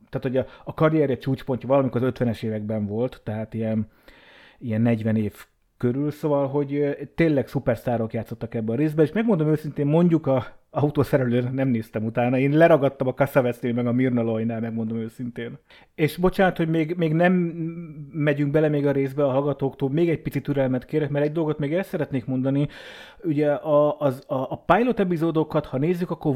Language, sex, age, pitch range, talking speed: Hungarian, male, 30-49, 120-160 Hz, 180 wpm